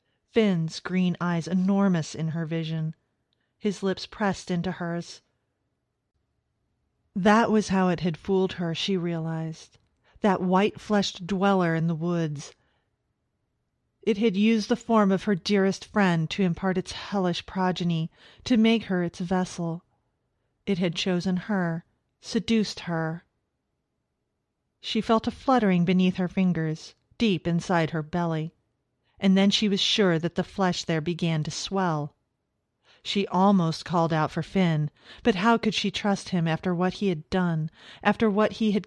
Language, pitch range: English, 165-205 Hz